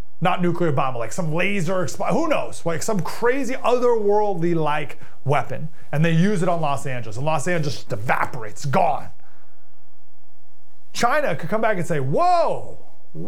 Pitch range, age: 130-170 Hz, 30-49